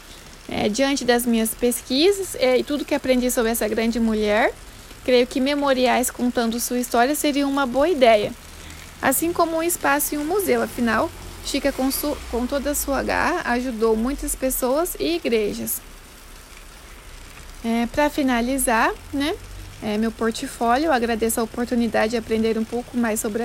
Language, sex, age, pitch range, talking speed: Portuguese, female, 20-39, 235-290 Hz, 145 wpm